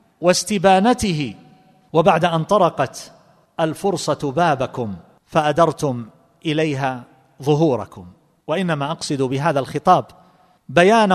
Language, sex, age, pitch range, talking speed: Arabic, male, 40-59, 135-180 Hz, 75 wpm